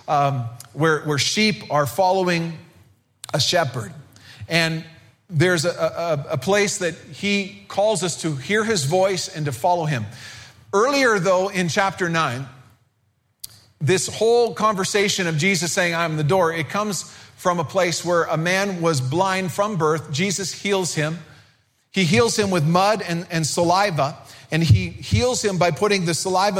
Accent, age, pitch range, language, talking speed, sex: American, 40-59, 150-190 Hz, English, 160 wpm, male